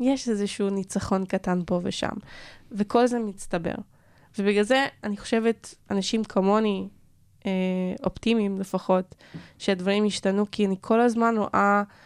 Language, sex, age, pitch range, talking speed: Hebrew, female, 20-39, 190-215 Hz, 125 wpm